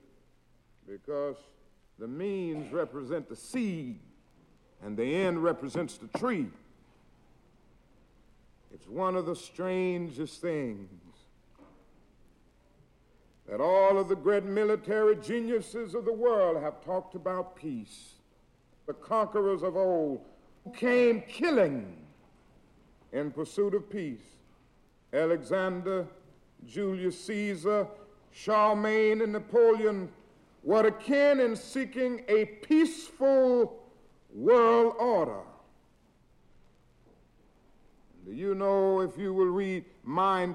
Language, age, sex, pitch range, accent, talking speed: English, 60-79, male, 170-215 Hz, American, 95 wpm